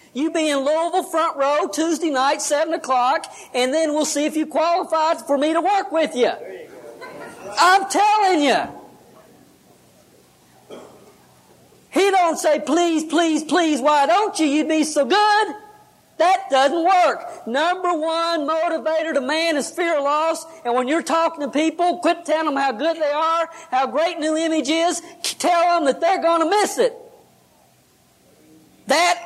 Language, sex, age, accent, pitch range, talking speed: English, female, 40-59, American, 290-340 Hz, 160 wpm